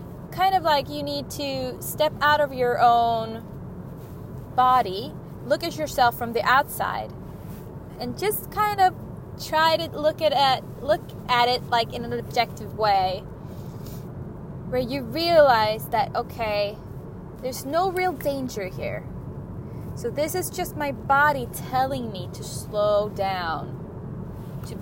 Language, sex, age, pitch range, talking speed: English, female, 20-39, 200-290 Hz, 140 wpm